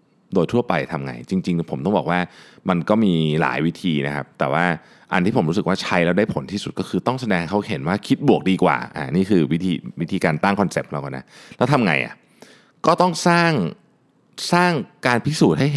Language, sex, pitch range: Thai, male, 85-140 Hz